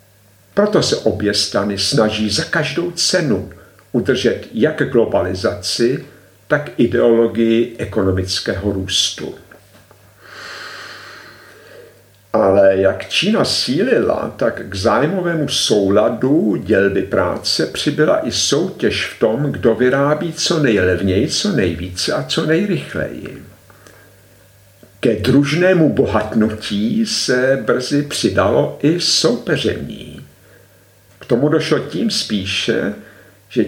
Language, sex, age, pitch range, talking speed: Czech, male, 50-69, 100-145 Hz, 95 wpm